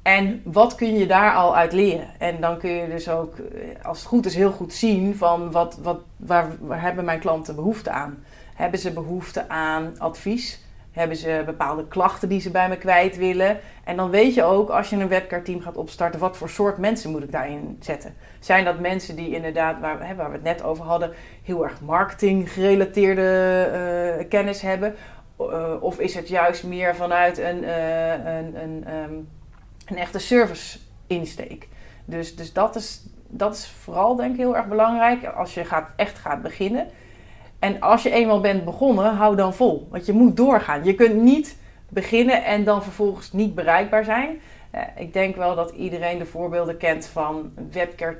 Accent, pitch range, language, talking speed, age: Dutch, 165-205 Hz, Dutch, 190 wpm, 30-49